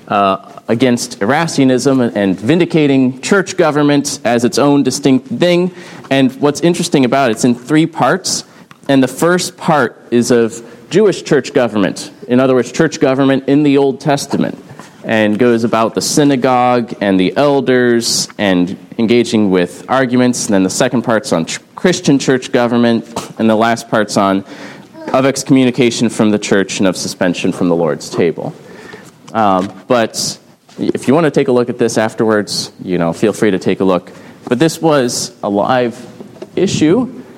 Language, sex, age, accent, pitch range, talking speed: English, male, 30-49, American, 105-135 Hz, 165 wpm